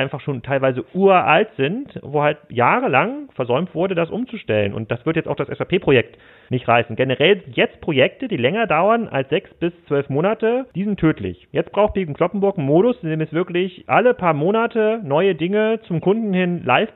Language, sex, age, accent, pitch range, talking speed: German, male, 40-59, German, 130-185 Hz, 190 wpm